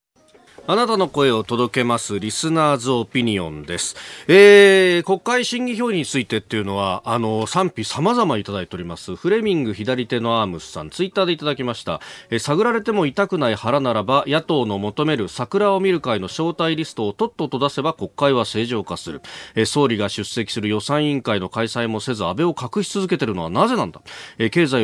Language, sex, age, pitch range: Japanese, male, 40-59, 110-185 Hz